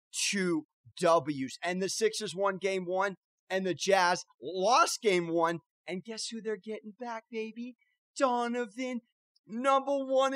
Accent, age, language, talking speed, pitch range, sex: American, 30-49, English, 140 wpm, 175-230 Hz, male